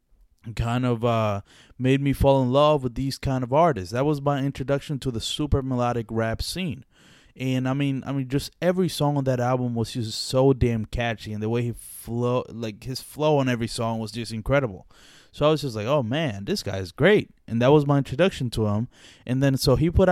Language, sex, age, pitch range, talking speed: English, male, 20-39, 105-140 Hz, 225 wpm